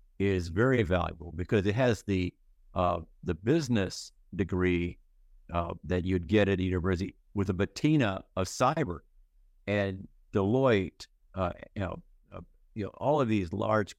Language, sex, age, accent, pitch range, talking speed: English, male, 50-69, American, 90-115 Hz, 150 wpm